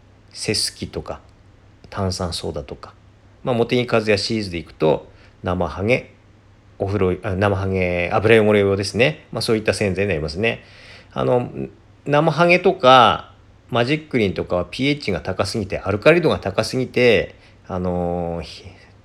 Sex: male